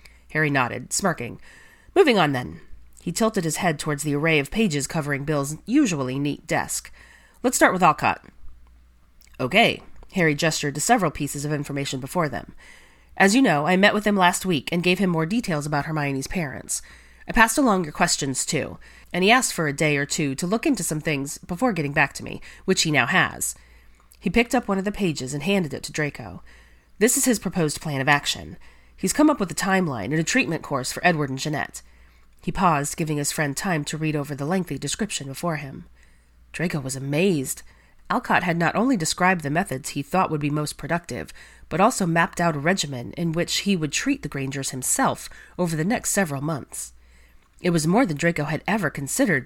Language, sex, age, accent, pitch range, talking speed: English, female, 30-49, American, 135-185 Hz, 205 wpm